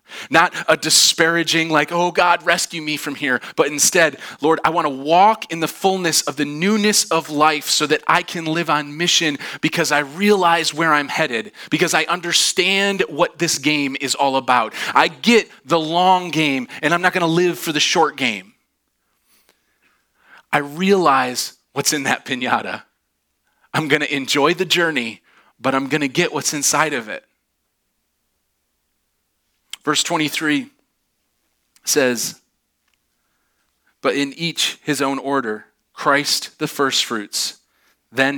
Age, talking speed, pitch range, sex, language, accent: 30-49, 150 wpm, 120-165 Hz, male, English, American